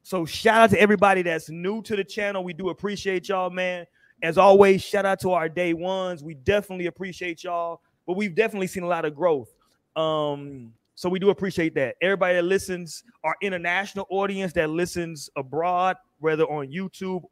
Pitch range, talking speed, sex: 165-200 Hz, 185 wpm, male